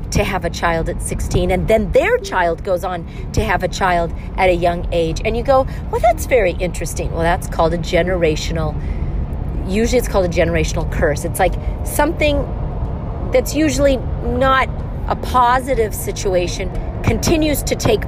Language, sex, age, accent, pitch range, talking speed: English, female, 40-59, American, 180-250 Hz, 165 wpm